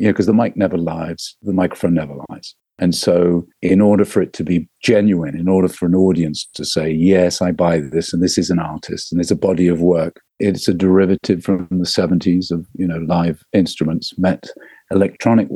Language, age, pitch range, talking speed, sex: English, 50-69, 80-95 Hz, 210 wpm, male